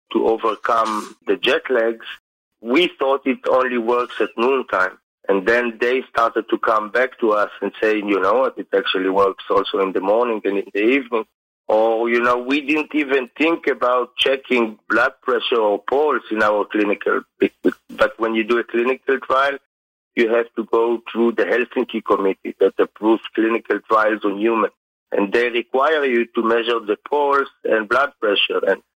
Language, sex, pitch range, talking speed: English, male, 110-125 Hz, 180 wpm